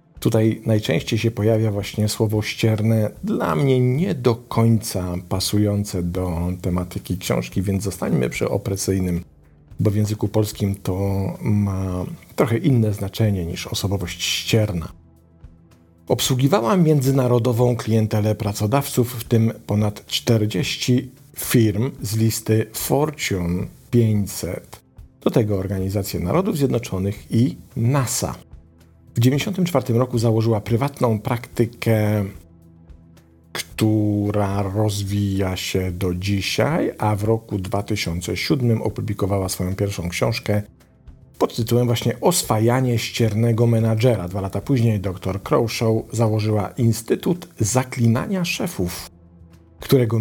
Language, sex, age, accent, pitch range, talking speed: Polish, male, 50-69, native, 95-120 Hz, 105 wpm